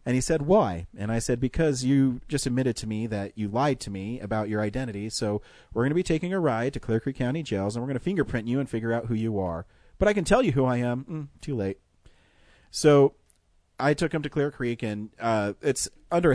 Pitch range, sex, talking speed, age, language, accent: 100-130 Hz, male, 250 wpm, 40-59, English, American